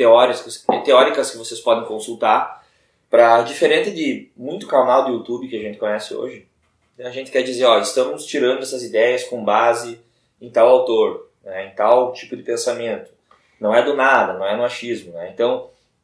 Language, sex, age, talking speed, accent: Portuguese, male, 20-39, 170 wpm, Brazilian